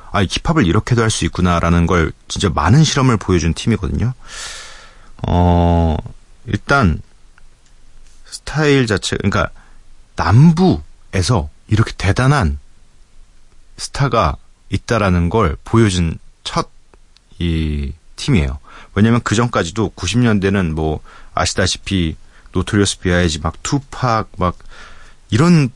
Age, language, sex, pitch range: 40-59, Korean, male, 85-125 Hz